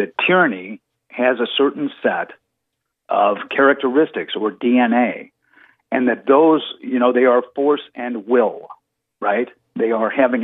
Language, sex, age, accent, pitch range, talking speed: English, male, 50-69, American, 120-140 Hz, 140 wpm